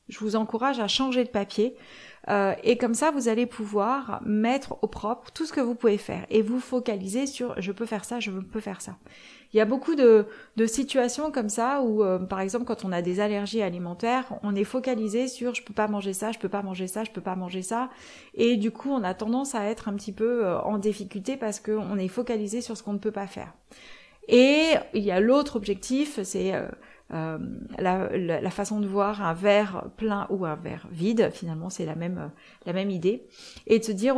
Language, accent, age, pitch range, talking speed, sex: French, French, 30-49, 200-250 Hz, 235 wpm, female